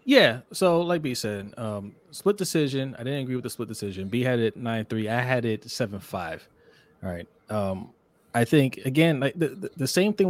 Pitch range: 105-135 Hz